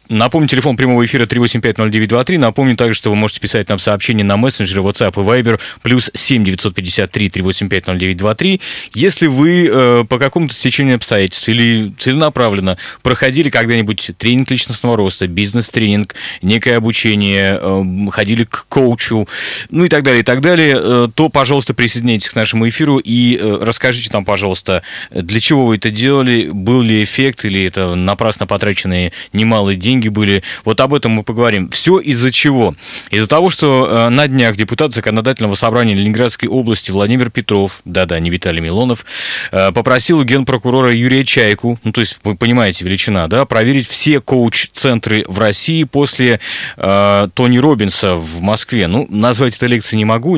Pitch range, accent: 105-130 Hz, native